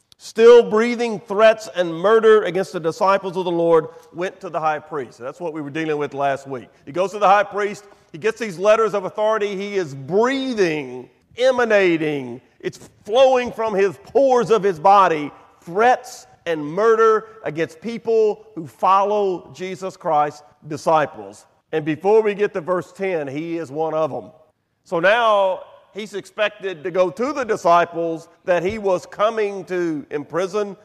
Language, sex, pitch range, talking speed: English, male, 160-210 Hz, 165 wpm